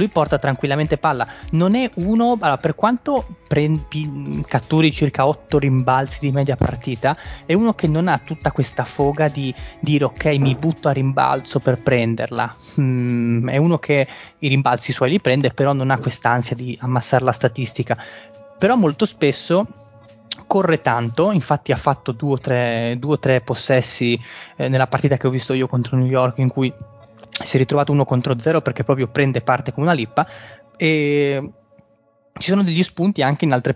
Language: Italian